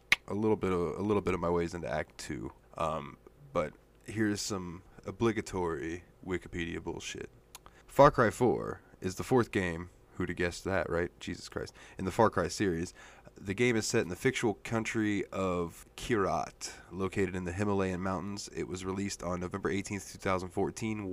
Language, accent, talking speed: English, American, 175 wpm